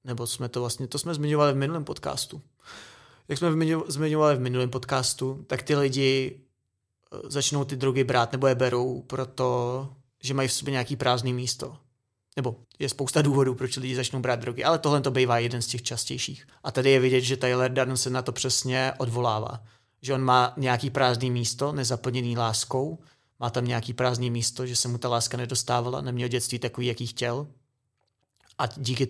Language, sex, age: Czech, male, 30-49